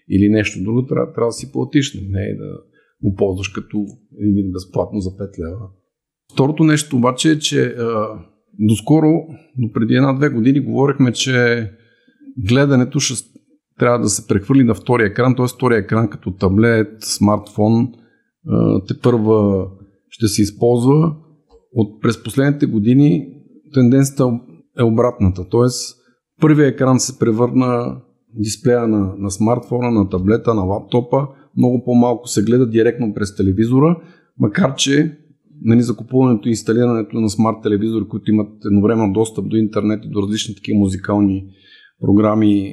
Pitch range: 105-130 Hz